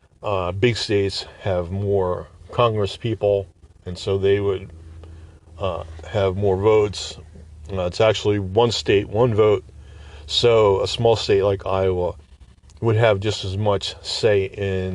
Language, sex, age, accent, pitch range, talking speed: English, male, 40-59, American, 90-110 Hz, 140 wpm